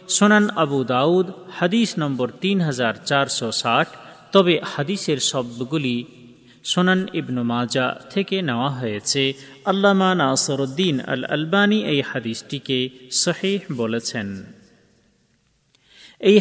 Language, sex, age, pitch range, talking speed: Bengali, male, 40-59, 135-195 Hz, 55 wpm